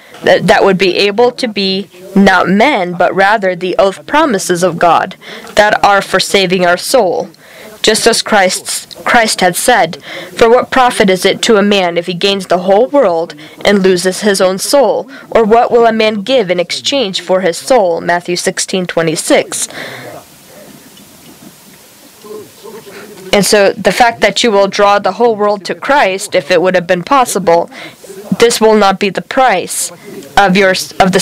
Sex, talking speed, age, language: female, 175 wpm, 20-39, English